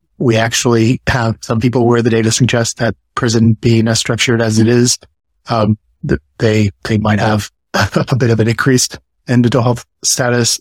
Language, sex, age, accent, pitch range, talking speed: English, male, 30-49, American, 110-125 Hz, 175 wpm